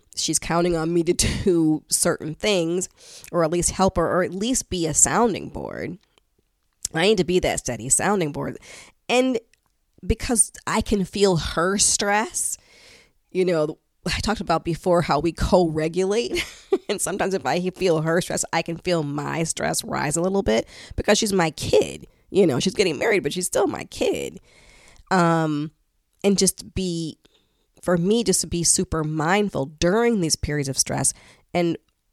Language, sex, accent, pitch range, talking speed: English, female, American, 155-185 Hz, 170 wpm